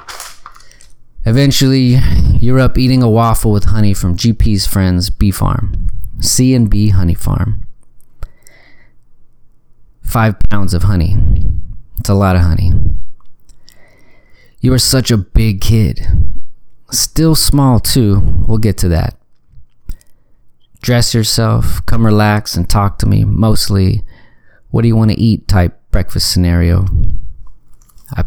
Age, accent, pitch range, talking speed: 30-49, American, 90-115 Hz, 125 wpm